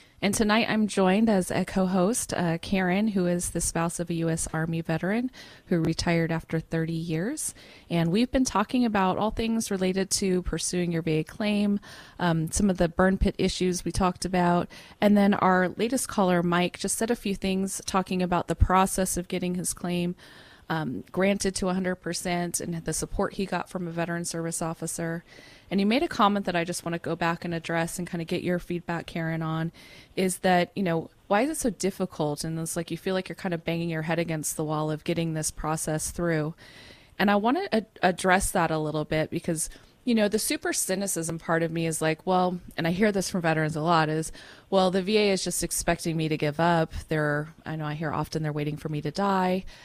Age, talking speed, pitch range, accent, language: 30-49, 220 wpm, 165-195 Hz, American, English